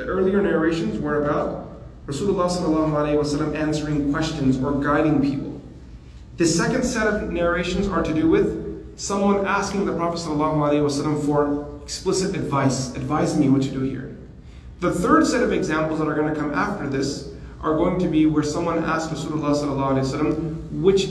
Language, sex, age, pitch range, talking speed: English, male, 30-49, 140-175 Hz, 155 wpm